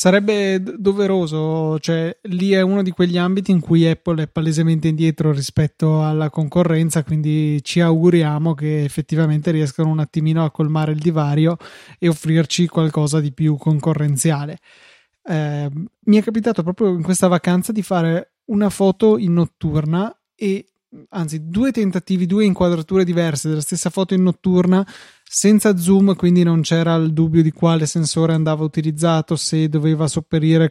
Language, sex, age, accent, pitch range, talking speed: Italian, male, 20-39, native, 155-180 Hz, 150 wpm